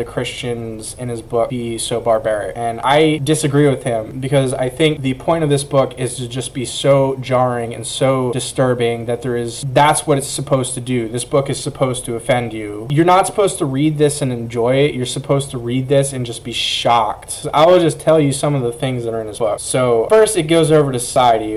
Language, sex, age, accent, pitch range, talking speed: English, male, 20-39, American, 115-140 Hz, 240 wpm